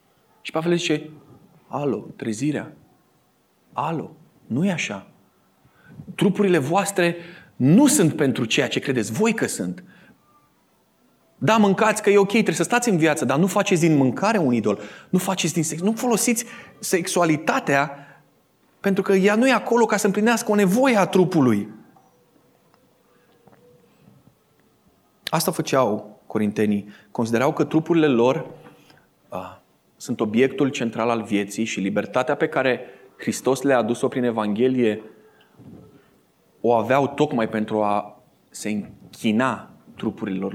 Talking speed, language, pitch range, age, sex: 125 wpm, Romanian, 110-170 Hz, 30-49, male